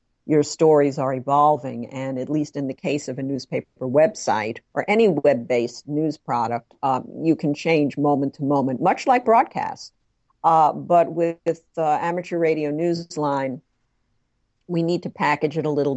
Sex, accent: female, American